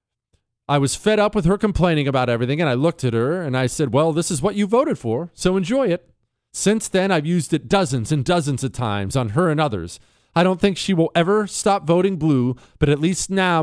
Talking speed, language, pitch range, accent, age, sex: 240 wpm, English, 120-190 Hz, American, 40-59, male